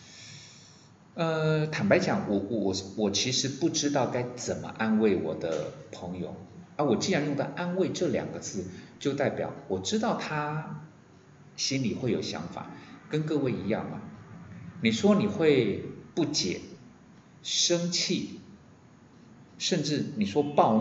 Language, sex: Chinese, male